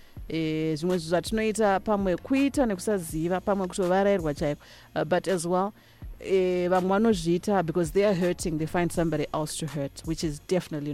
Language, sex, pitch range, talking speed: English, female, 160-200 Hz, 100 wpm